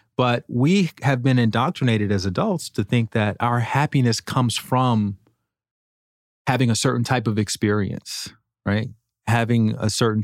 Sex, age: male, 30-49